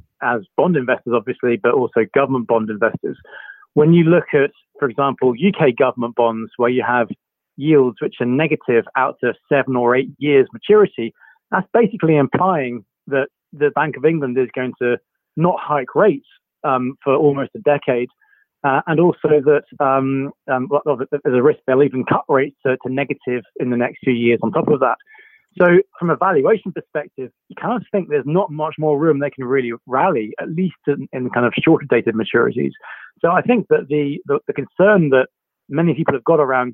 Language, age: English, 30-49